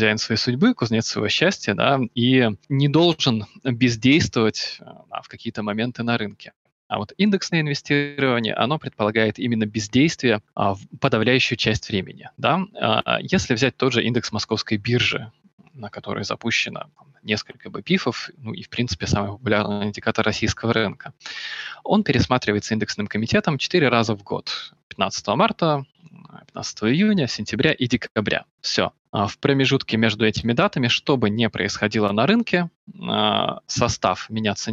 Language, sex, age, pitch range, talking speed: Russian, male, 20-39, 110-140 Hz, 140 wpm